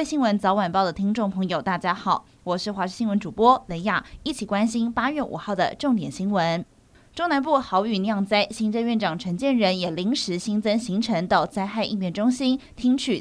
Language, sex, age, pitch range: Chinese, female, 20-39, 195-250 Hz